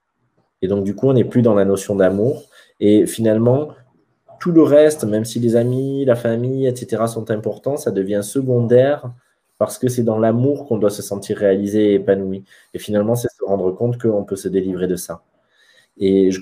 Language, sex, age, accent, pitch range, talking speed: French, male, 20-39, French, 95-120 Hz, 195 wpm